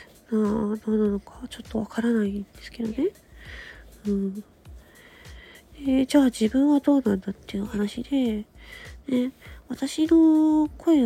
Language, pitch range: Japanese, 215-295 Hz